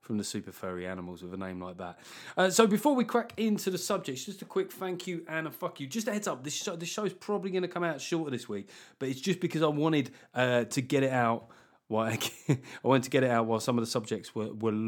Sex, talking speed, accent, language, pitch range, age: male, 280 wpm, British, English, 110-160 Hz, 30-49